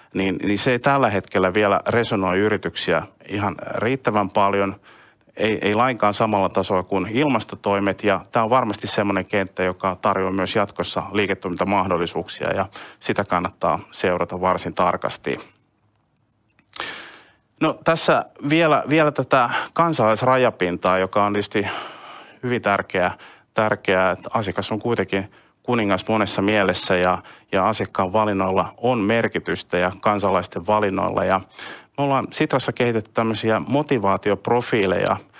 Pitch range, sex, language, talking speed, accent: 95-115 Hz, male, Finnish, 120 wpm, native